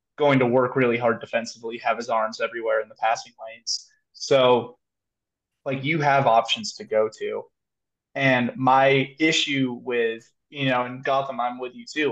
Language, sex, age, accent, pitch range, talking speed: English, male, 20-39, American, 120-140 Hz, 170 wpm